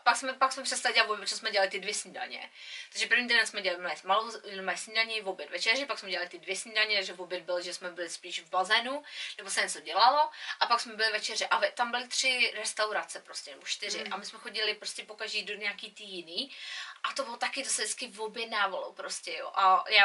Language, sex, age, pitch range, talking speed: Czech, female, 20-39, 195-255 Hz, 220 wpm